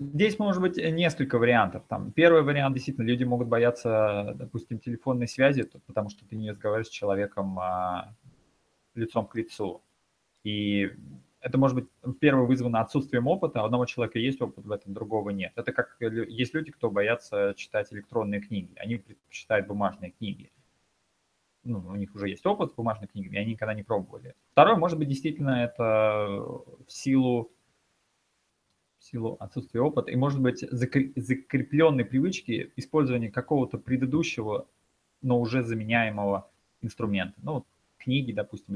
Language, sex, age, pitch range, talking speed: Russian, male, 20-39, 105-130 Hz, 145 wpm